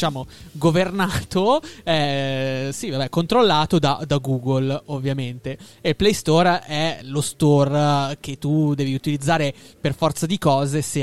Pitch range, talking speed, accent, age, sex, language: 135-190 Hz, 130 wpm, native, 20-39, male, Italian